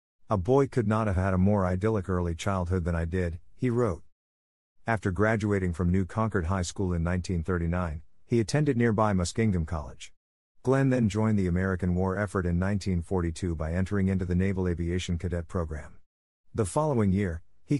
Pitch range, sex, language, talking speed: 90-110 Hz, male, English, 170 wpm